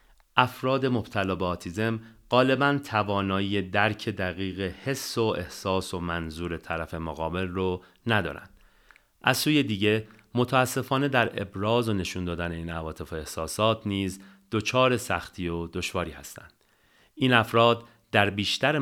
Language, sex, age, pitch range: Persian, male, 40-59, 90-125 Hz